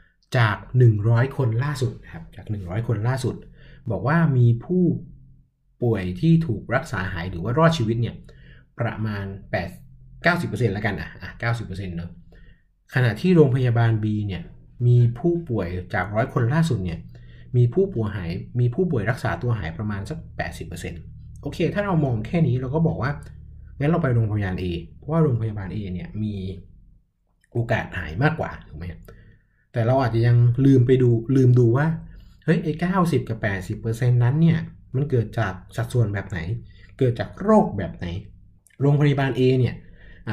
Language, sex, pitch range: Thai, male, 95-135 Hz